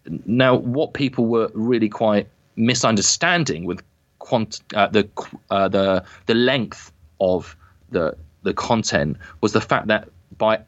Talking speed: 135 wpm